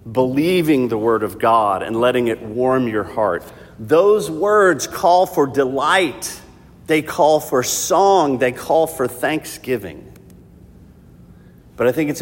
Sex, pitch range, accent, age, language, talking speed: male, 105-145 Hz, American, 50-69, English, 135 wpm